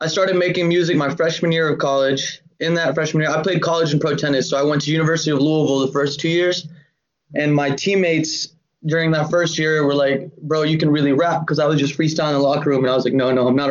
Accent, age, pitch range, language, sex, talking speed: American, 20-39, 145-165 Hz, English, male, 265 wpm